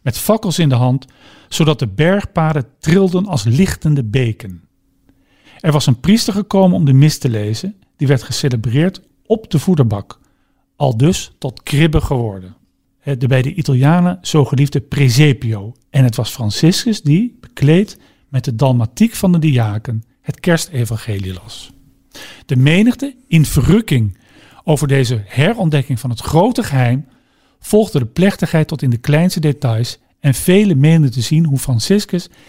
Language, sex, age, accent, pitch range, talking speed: Dutch, male, 50-69, Dutch, 120-165 Hz, 150 wpm